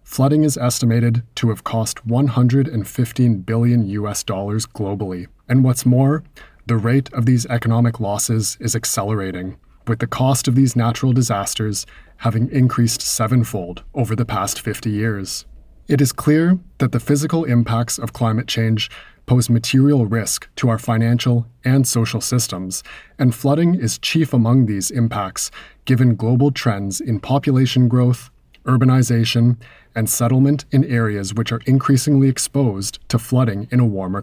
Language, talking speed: English, 145 wpm